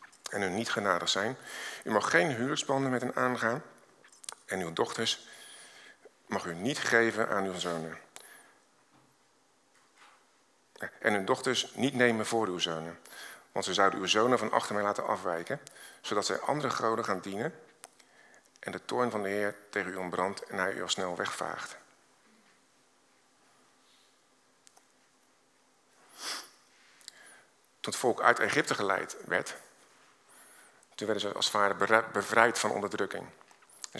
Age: 50-69